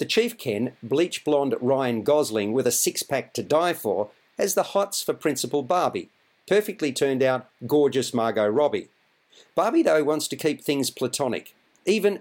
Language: English